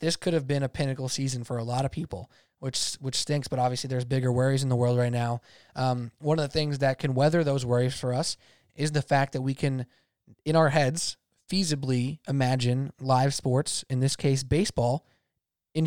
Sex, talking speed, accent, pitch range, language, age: male, 210 wpm, American, 130-160 Hz, English, 20-39